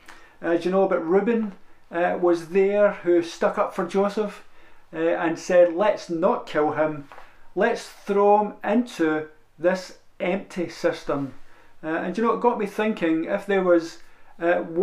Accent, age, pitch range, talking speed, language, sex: British, 50-69, 160-205 Hz, 160 wpm, English, male